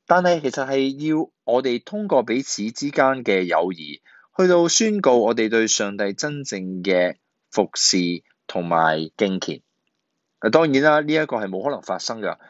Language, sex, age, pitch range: Chinese, male, 20-39, 100-145 Hz